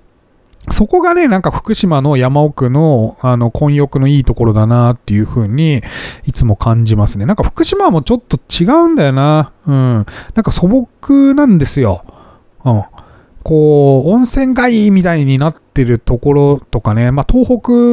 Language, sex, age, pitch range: Japanese, male, 30-49, 110-175 Hz